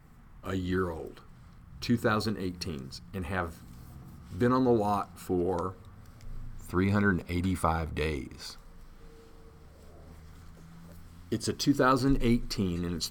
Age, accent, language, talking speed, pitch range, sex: 40-59, American, English, 80 wpm, 85-115 Hz, male